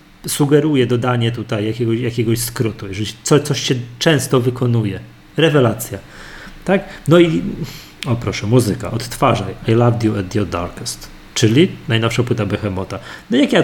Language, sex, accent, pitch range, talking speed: Polish, male, native, 110-145 Hz, 145 wpm